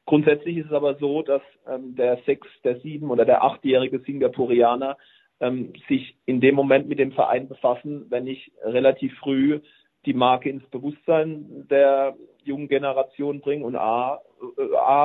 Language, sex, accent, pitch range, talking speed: German, male, German, 125-150 Hz, 155 wpm